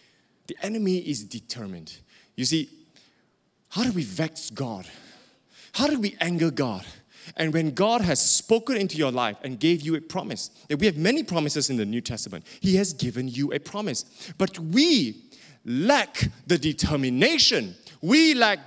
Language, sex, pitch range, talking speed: English, male, 150-230 Hz, 165 wpm